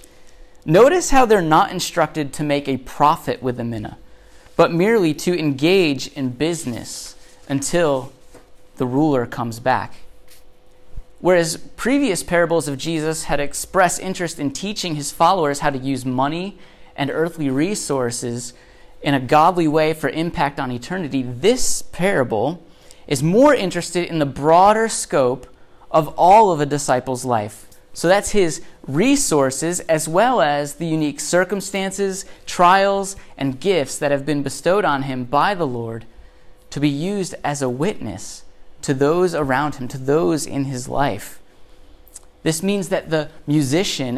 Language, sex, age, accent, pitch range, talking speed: English, male, 30-49, American, 135-175 Hz, 145 wpm